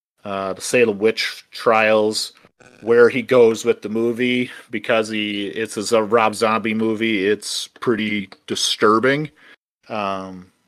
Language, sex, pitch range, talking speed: English, male, 100-125 Hz, 130 wpm